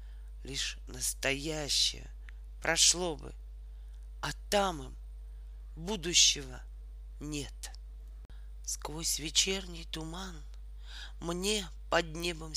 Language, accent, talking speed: Russian, native, 70 wpm